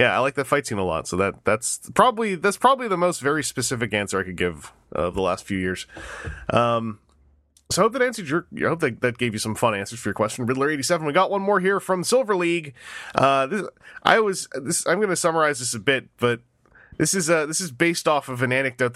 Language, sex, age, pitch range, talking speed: English, male, 30-49, 110-160 Hz, 250 wpm